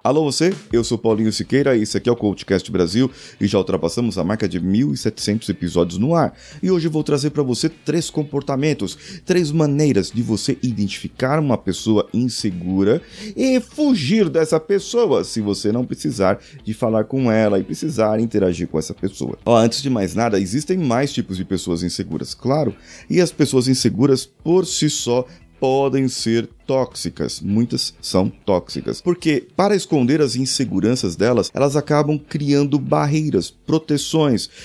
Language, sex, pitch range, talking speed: Portuguese, male, 100-145 Hz, 165 wpm